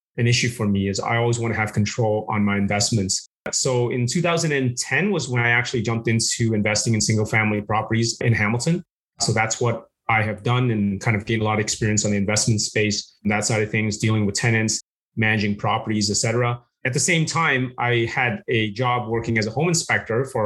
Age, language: 30-49, English